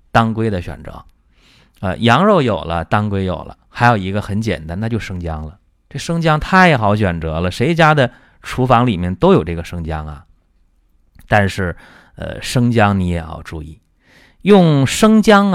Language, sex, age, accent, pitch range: Chinese, male, 30-49, native, 80-125 Hz